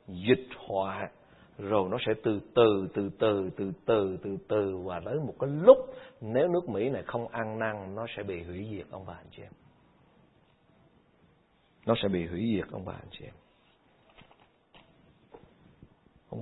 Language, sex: Vietnamese, male